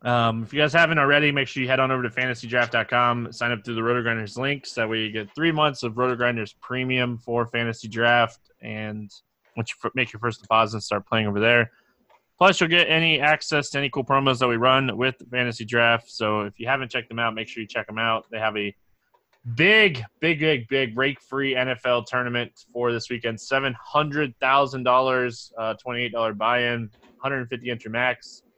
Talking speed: 190 wpm